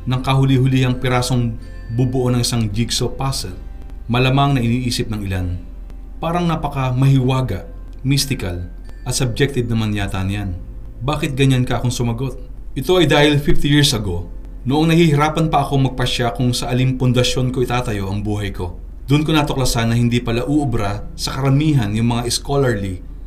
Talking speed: 150 wpm